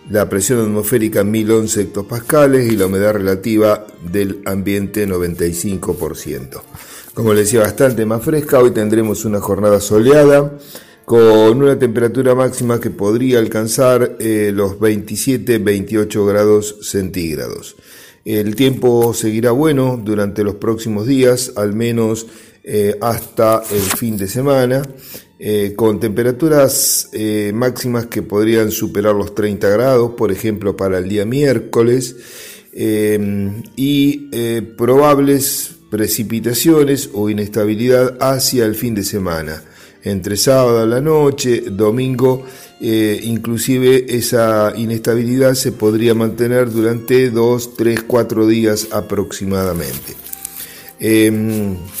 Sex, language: male, Spanish